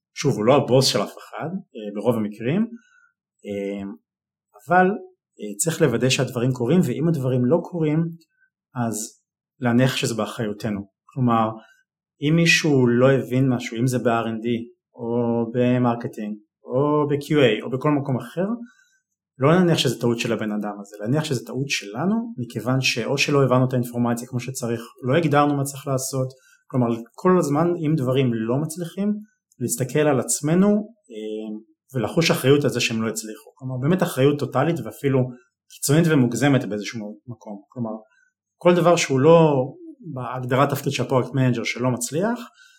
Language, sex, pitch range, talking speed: English, male, 120-155 Hz, 145 wpm